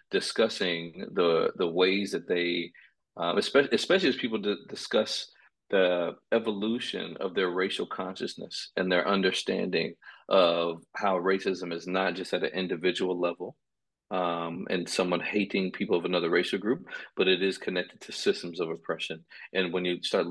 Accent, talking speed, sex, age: American, 155 wpm, male, 40-59